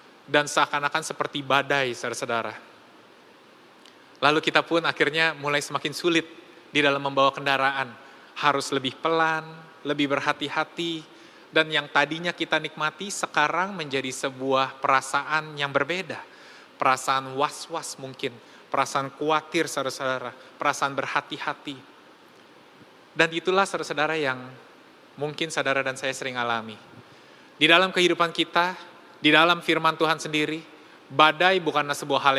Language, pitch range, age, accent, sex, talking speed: Indonesian, 140-170 Hz, 20-39, native, male, 115 wpm